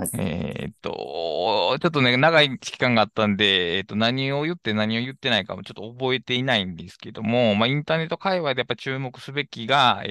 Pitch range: 110-165 Hz